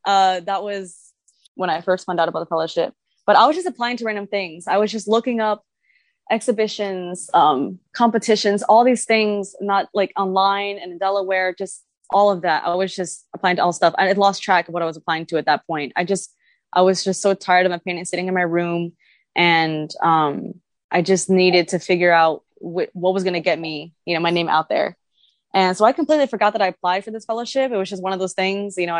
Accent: American